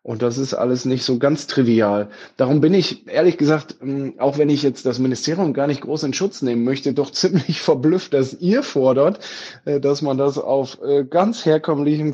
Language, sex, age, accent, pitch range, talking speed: German, male, 20-39, German, 135-165 Hz, 190 wpm